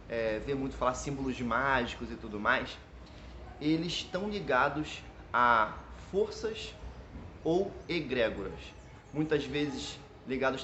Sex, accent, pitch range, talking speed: male, Brazilian, 105-160 Hz, 100 wpm